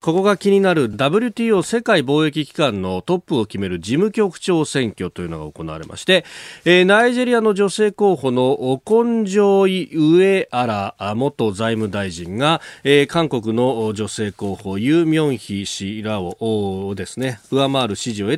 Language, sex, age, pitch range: Japanese, male, 40-59, 105-160 Hz